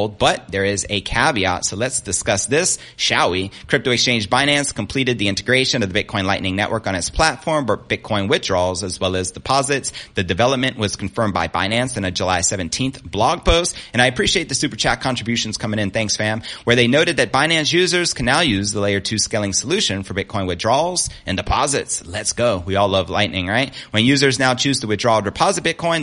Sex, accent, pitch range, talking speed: male, American, 95-130 Hz, 205 wpm